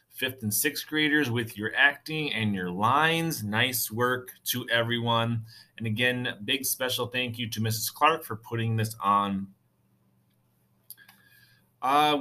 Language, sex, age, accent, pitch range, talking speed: English, male, 30-49, American, 110-140 Hz, 140 wpm